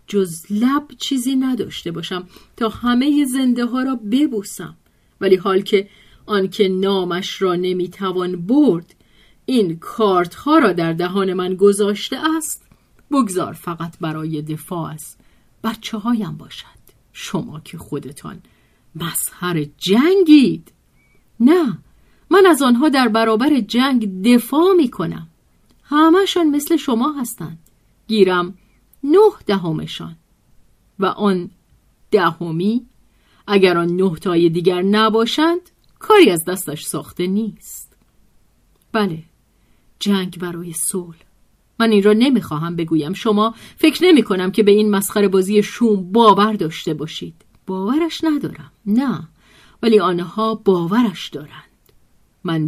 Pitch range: 175-245 Hz